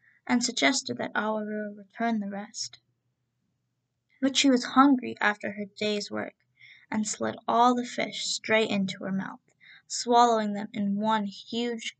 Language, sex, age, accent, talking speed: English, female, 10-29, American, 145 wpm